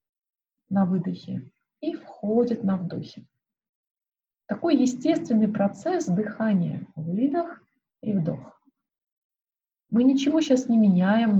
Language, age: Russian, 30-49